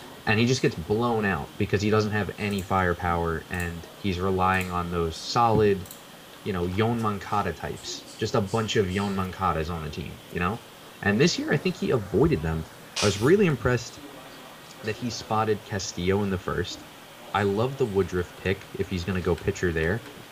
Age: 20-39